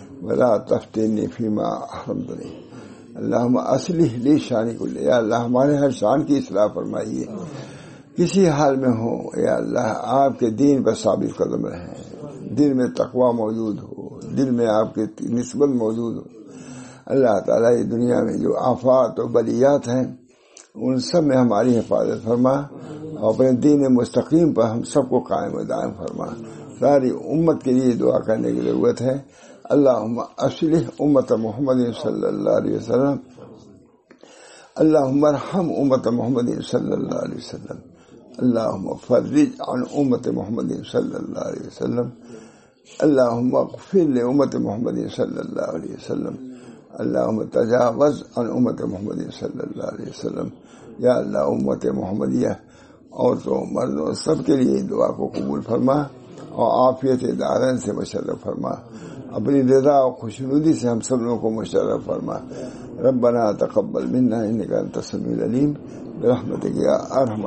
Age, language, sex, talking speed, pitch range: 60-79, English, male, 125 wpm, 115-140 Hz